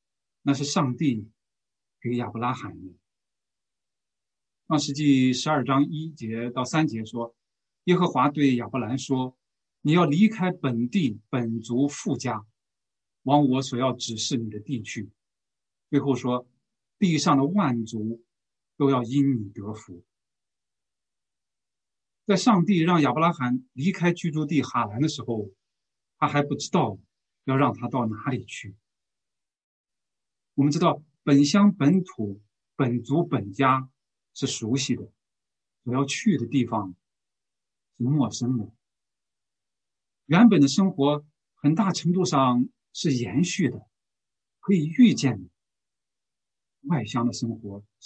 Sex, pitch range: male, 110-150 Hz